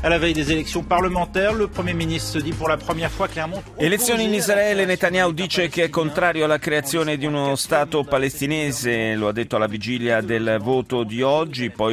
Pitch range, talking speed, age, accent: 110-170 Hz, 165 wpm, 30-49, native